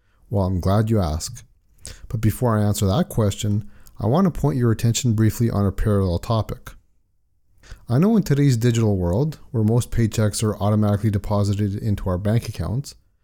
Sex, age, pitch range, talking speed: male, 30-49, 95-120 Hz, 170 wpm